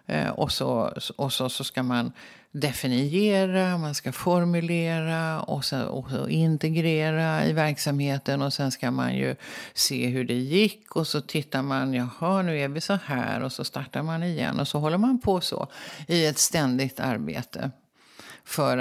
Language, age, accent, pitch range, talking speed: English, 50-69, Swedish, 125-160 Hz, 160 wpm